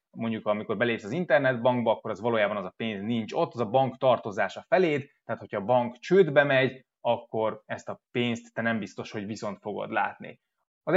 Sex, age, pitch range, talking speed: male, 20-39, 110-135 Hz, 195 wpm